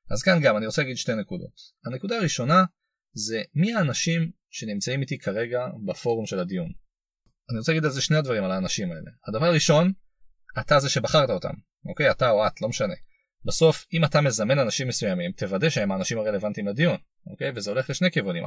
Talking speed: 185 wpm